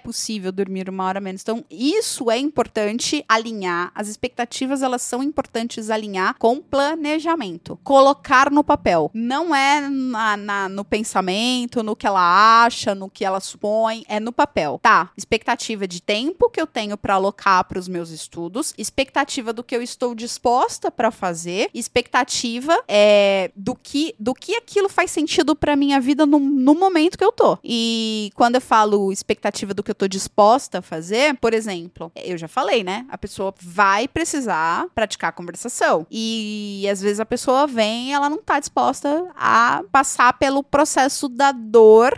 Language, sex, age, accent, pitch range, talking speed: Portuguese, female, 20-39, Brazilian, 210-280 Hz, 165 wpm